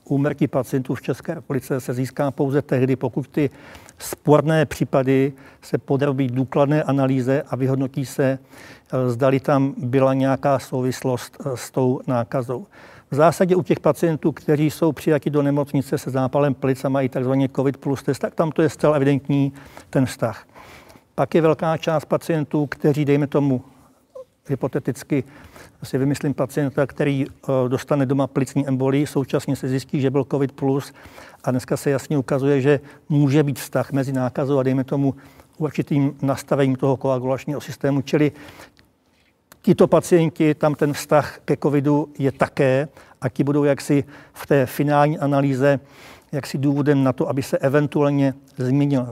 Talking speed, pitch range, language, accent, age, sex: 150 wpm, 135-150 Hz, Czech, native, 50-69, male